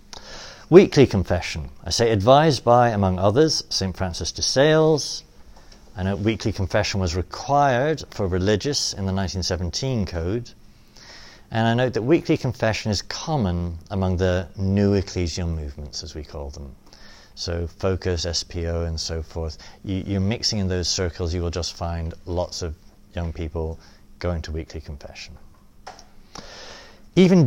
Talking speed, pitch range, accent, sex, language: 140 wpm, 85-105 Hz, British, male, English